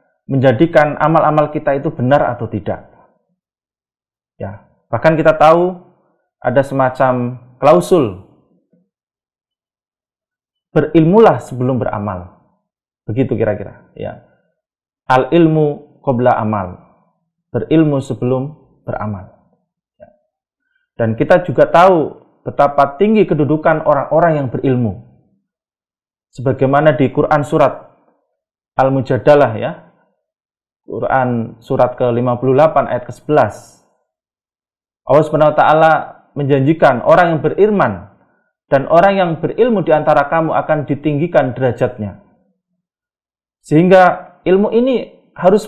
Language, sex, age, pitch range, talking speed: Indonesian, male, 30-49, 130-175 Hz, 90 wpm